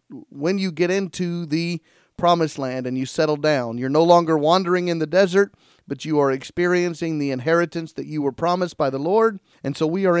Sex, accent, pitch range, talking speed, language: male, American, 150-185 Hz, 205 wpm, English